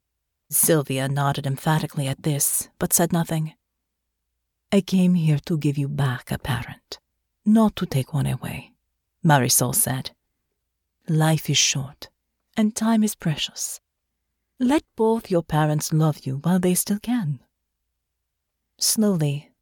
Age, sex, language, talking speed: 40-59, female, English, 130 wpm